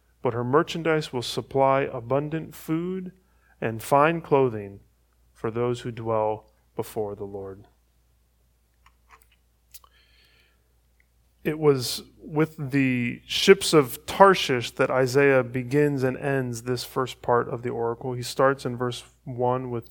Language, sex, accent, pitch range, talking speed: English, male, American, 120-145 Hz, 125 wpm